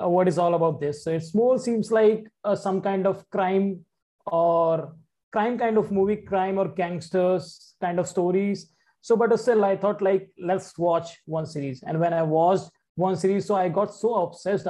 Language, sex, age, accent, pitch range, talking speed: English, male, 20-39, Indian, 175-210 Hz, 190 wpm